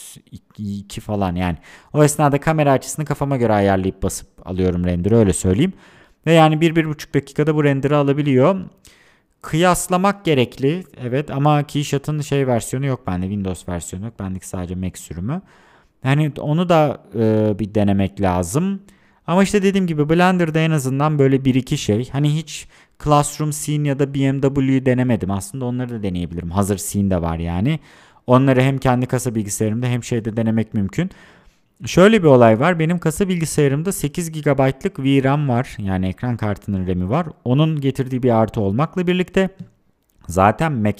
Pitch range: 100-150 Hz